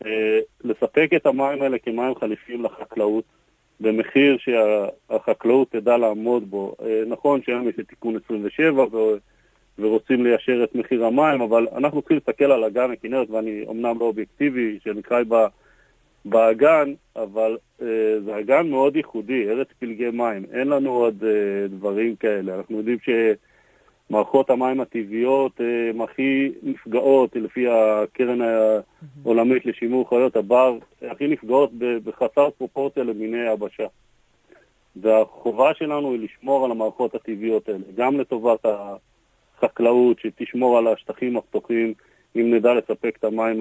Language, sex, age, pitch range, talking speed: Hebrew, male, 40-59, 110-130 Hz, 130 wpm